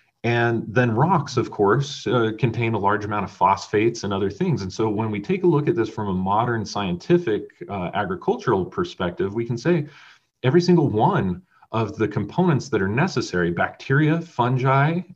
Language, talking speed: English, 180 wpm